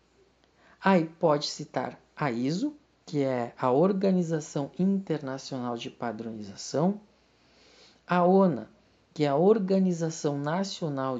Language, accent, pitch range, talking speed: Portuguese, Brazilian, 150-200 Hz, 100 wpm